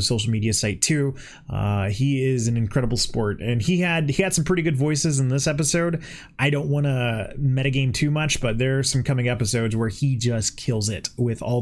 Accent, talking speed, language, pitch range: American, 215 wpm, English, 115-145 Hz